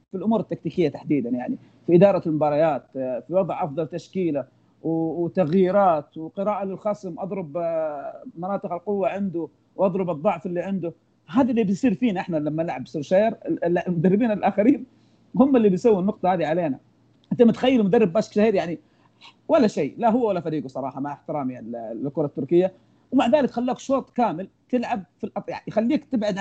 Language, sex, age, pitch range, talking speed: Arabic, male, 40-59, 160-230 Hz, 150 wpm